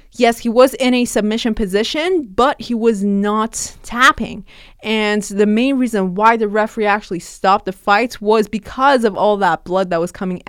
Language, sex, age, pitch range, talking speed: English, female, 20-39, 180-235 Hz, 185 wpm